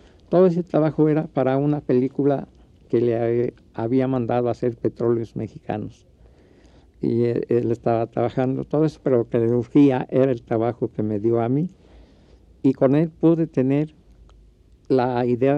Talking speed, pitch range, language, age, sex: 155 wpm, 105-130 Hz, Spanish, 60-79, male